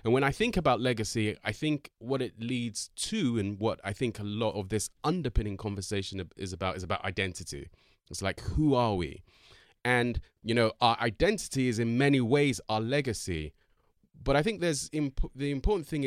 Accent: British